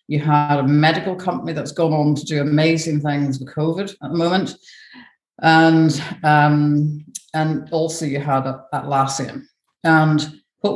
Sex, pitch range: female, 140-165 Hz